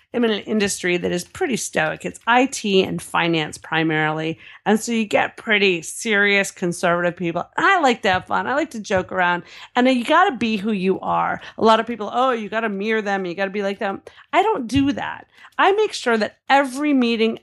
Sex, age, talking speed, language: female, 40-59, 225 wpm, English